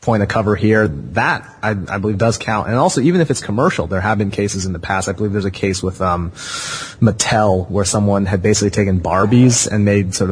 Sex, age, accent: male, 30-49, American